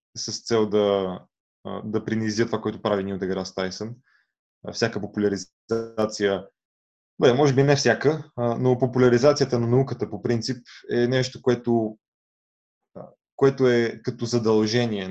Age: 20-39